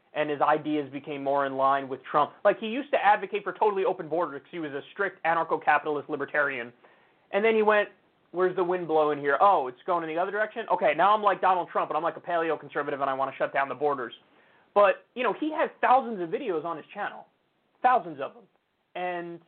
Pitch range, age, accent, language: 170-225 Hz, 30-49, American, English